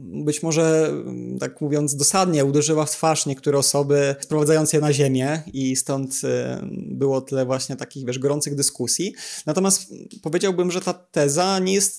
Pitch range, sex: 140-160 Hz, male